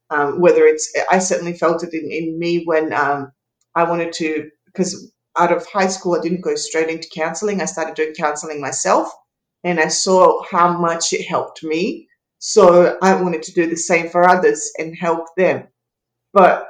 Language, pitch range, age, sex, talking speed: English, 160-200 Hz, 30-49, female, 185 wpm